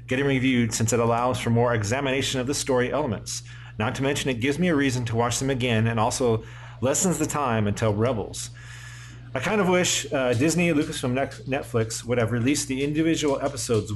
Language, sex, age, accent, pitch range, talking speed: English, male, 40-59, American, 115-135 Hz, 200 wpm